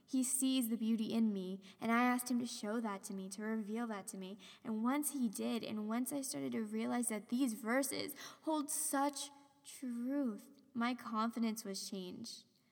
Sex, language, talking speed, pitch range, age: female, English, 190 wpm, 210-250 Hz, 10-29